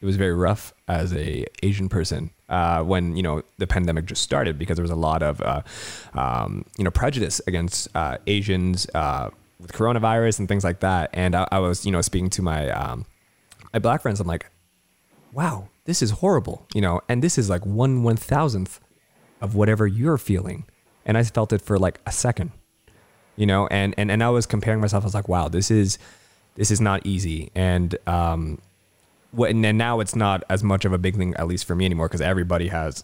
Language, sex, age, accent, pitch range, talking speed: English, male, 20-39, American, 90-105 Hz, 215 wpm